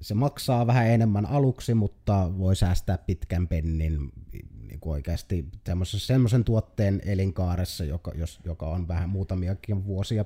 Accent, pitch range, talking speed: native, 85-100 Hz, 115 wpm